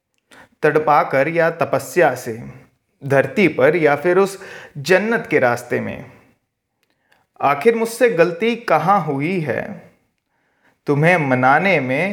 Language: Hindi